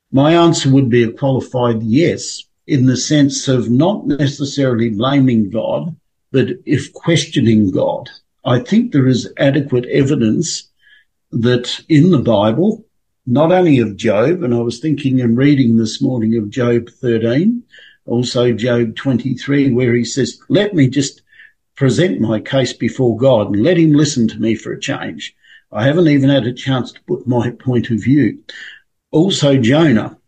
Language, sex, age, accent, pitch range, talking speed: English, male, 50-69, Australian, 120-145 Hz, 160 wpm